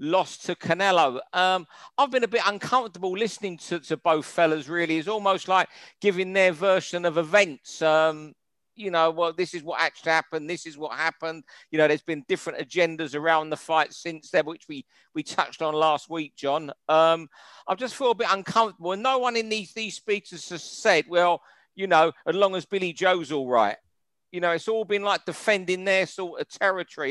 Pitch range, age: 160-200 Hz, 50-69